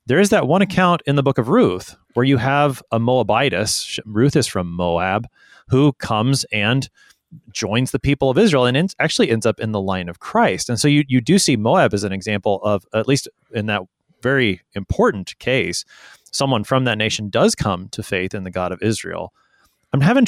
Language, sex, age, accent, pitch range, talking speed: English, male, 30-49, American, 105-135 Hz, 205 wpm